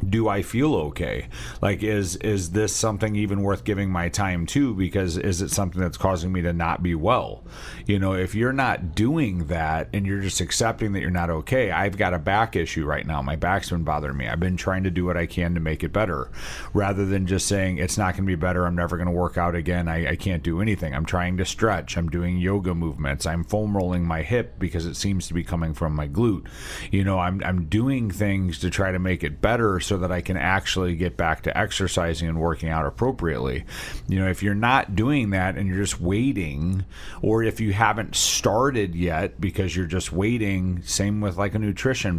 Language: English